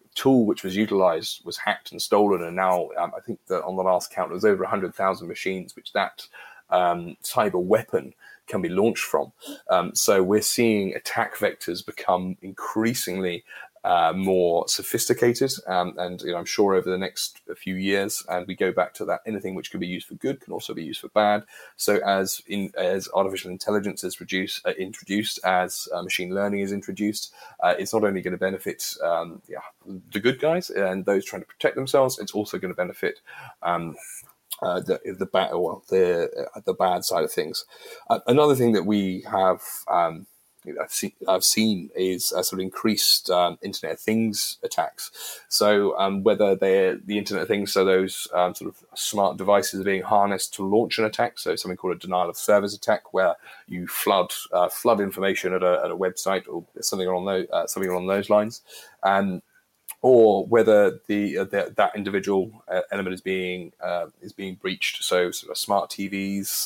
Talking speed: 185 wpm